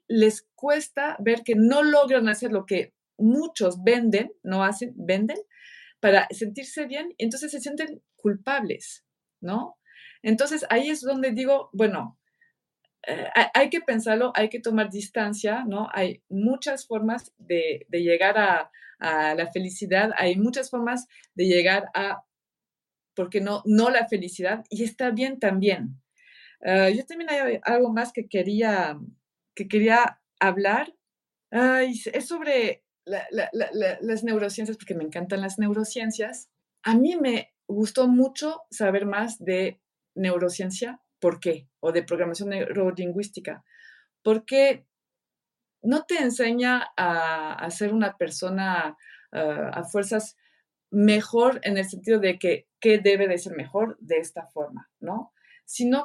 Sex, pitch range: female, 195-255 Hz